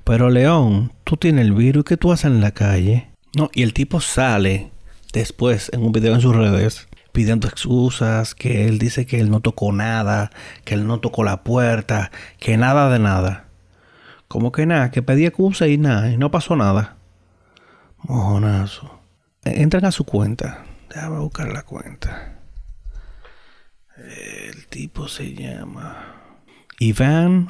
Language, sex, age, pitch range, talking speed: Spanish, male, 40-59, 105-130 Hz, 155 wpm